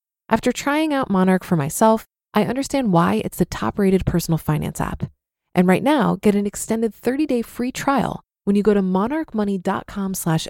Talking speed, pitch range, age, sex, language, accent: 170 wpm, 175-230 Hz, 20-39, female, English, American